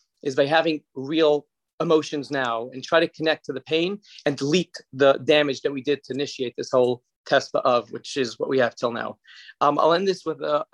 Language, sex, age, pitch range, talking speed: English, male, 30-49, 135-170 Hz, 220 wpm